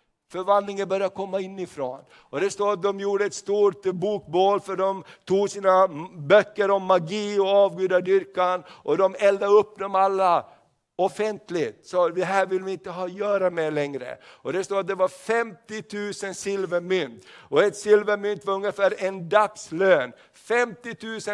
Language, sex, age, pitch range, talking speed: Swedish, male, 60-79, 195-245 Hz, 165 wpm